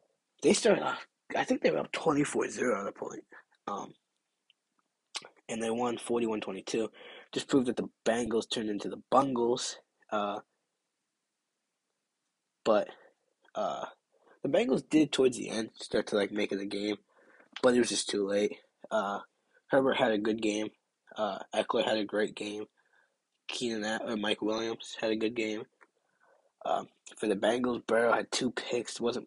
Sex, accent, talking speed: male, American, 170 wpm